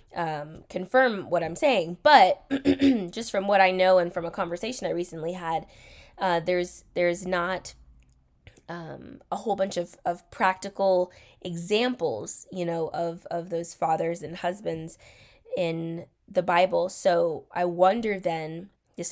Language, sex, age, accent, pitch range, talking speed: English, female, 20-39, American, 170-195 Hz, 145 wpm